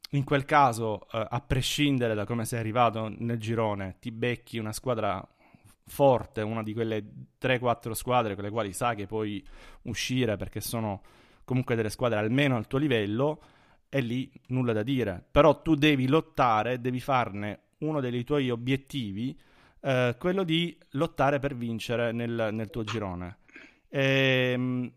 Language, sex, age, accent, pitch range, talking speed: Italian, male, 30-49, native, 115-135 Hz, 155 wpm